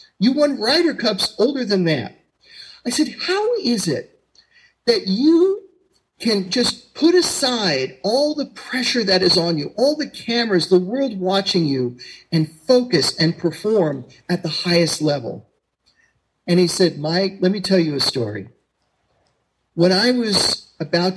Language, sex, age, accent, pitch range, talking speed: English, male, 40-59, American, 155-220 Hz, 155 wpm